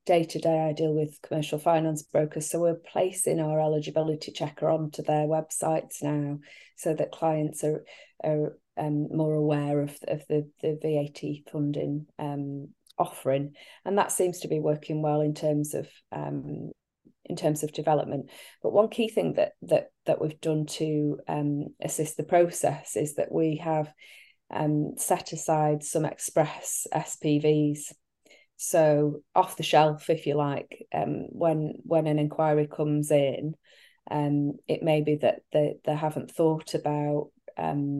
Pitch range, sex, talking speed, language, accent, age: 145-155 Hz, female, 145 wpm, English, British, 30-49